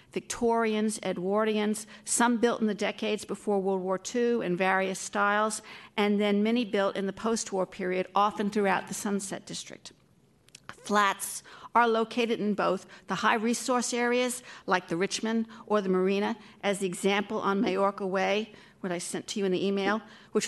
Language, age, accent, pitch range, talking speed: English, 50-69, American, 190-225 Hz, 165 wpm